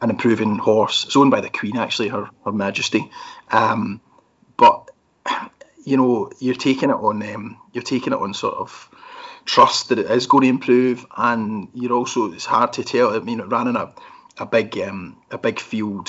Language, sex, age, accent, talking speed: English, male, 30-49, British, 200 wpm